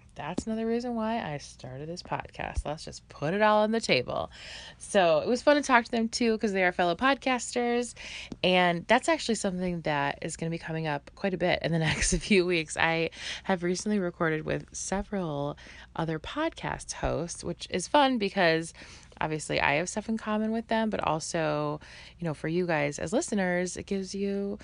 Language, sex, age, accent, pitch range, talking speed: English, female, 20-39, American, 155-210 Hz, 200 wpm